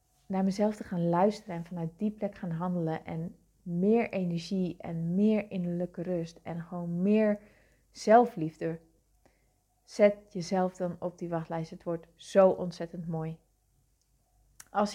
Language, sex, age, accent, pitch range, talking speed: Dutch, female, 30-49, Dutch, 175-210 Hz, 135 wpm